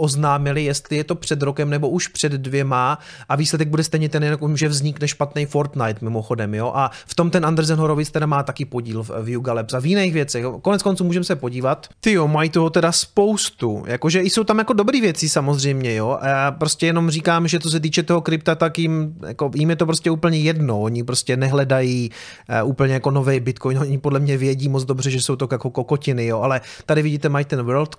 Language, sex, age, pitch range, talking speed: Czech, male, 30-49, 130-165 Hz, 220 wpm